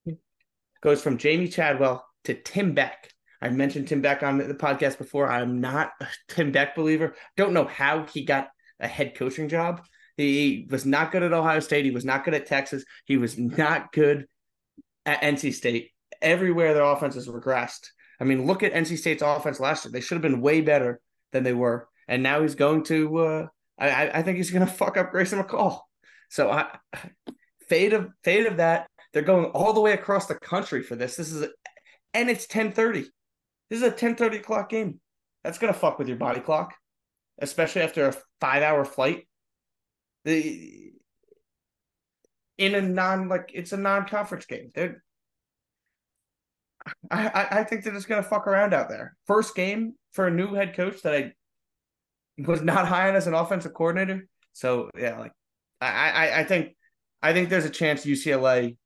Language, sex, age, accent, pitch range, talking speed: English, male, 30-49, American, 140-195 Hz, 190 wpm